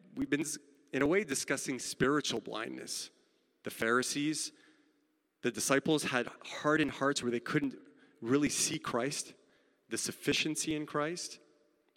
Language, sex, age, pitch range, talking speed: English, male, 30-49, 115-155 Hz, 125 wpm